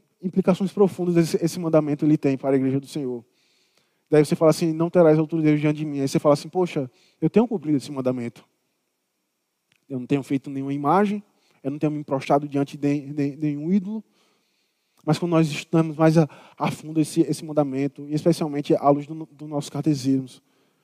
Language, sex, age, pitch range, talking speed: Portuguese, male, 20-39, 145-185 Hz, 190 wpm